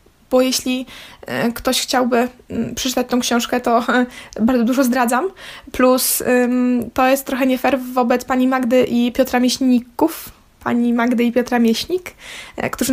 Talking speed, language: 135 wpm, Polish